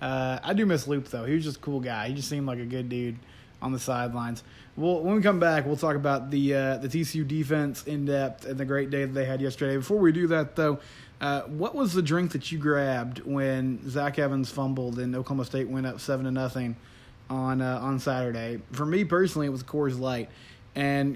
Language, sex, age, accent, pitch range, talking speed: English, male, 20-39, American, 130-155 Hz, 235 wpm